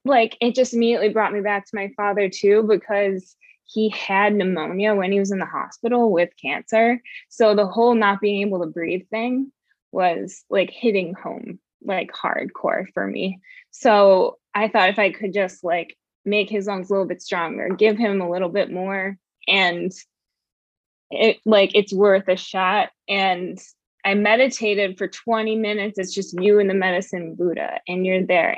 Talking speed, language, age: 175 wpm, English, 20-39